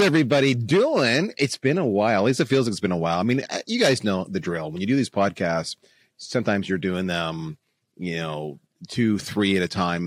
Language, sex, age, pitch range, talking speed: English, male, 30-49, 85-125 Hz, 225 wpm